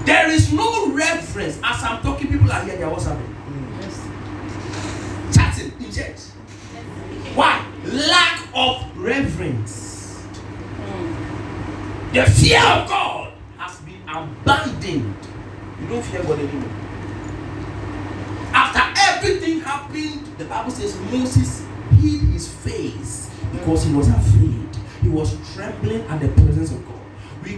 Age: 40-59